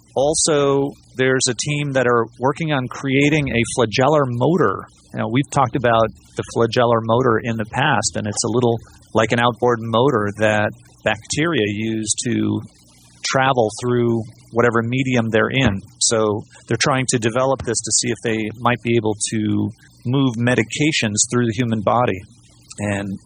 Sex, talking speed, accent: male, 155 wpm, American